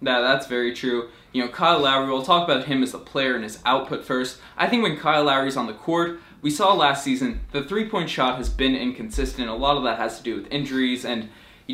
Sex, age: male, 20-39